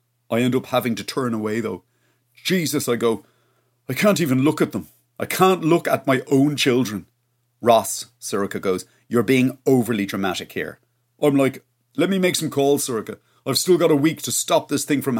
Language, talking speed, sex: English, 195 wpm, male